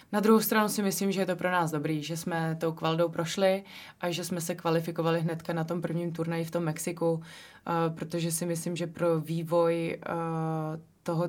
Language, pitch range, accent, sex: Czech, 160-170 Hz, native, female